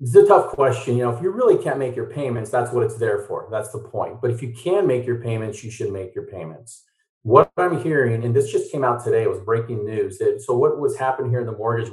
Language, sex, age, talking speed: English, male, 30-49, 275 wpm